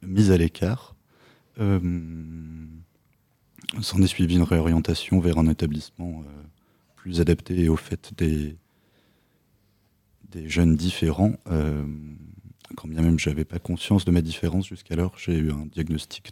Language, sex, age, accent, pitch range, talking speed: French, male, 30-49, French, 75-90 Hz, 135 wpm